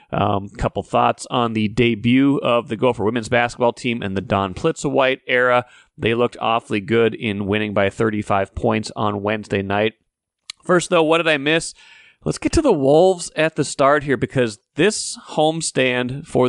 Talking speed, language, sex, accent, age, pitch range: 180 wpm, English, male, American, 30-49, 110-135 Hz